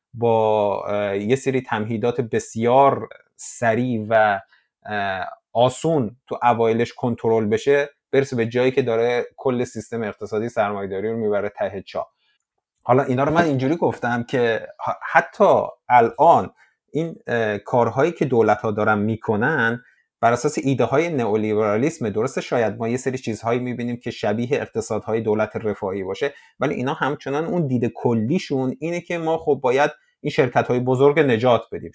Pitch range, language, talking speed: 110-135 Hz, Persian, 140 wpm